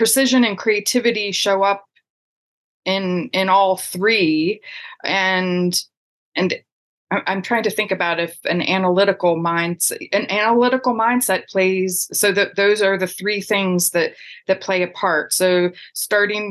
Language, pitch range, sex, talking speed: English, 170-195 Hz, female, 140 wpm